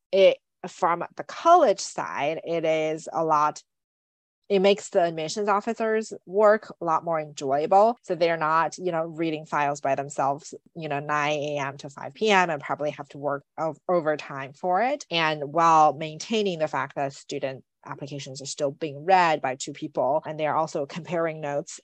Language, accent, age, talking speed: English, American, 30-49, 175 wpm